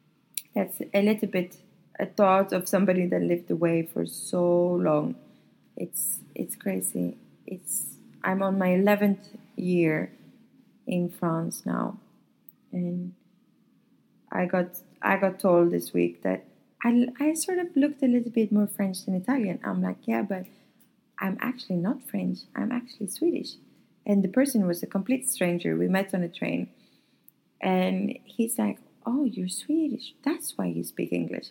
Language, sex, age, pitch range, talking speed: English, female, 20-39, 170-215 Hz, 155 wpm